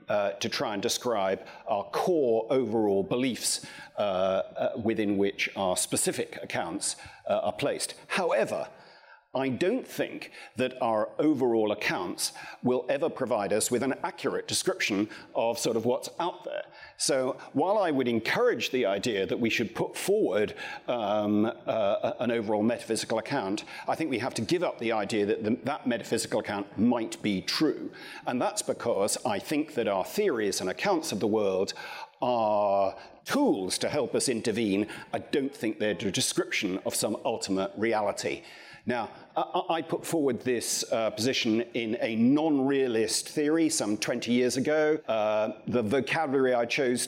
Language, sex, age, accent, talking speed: English, male, 50-69, British, 160 wpm